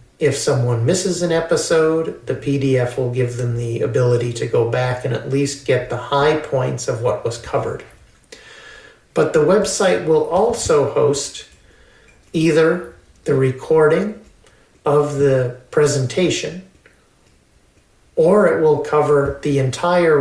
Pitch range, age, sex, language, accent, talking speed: 130-150 Hz, 50-69, male, English, American, 130 wpm